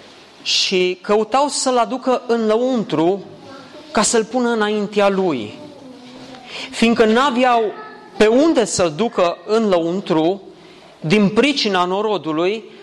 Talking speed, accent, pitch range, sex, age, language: 105 wpm, native, 195-265 Hz, male, 30-49, Romanian